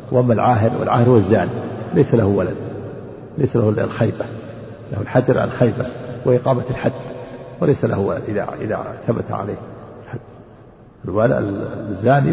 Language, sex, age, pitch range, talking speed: Arabic, male, 50-69, 110-135 Hz, 110 wpm